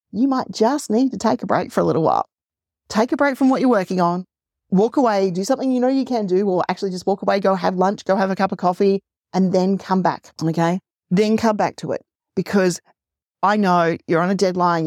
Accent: Australian